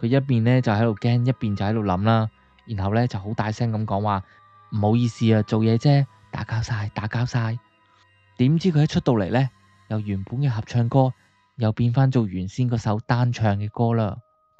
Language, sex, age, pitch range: Chinese, male, 20-39, 105-135 Hz